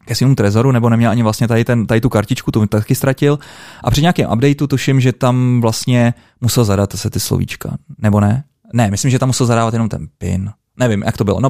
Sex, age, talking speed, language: male, 20-39, 225 wpm, Czech